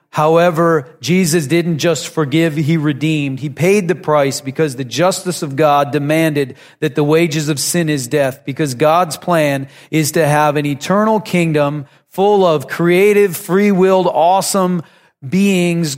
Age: 40-59